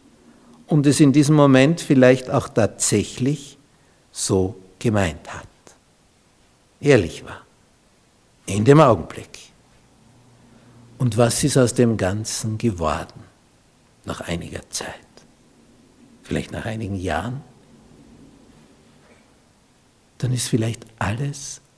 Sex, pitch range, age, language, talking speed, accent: male, 100-130 Hz, 60-79, German, 95 wpm, Austrian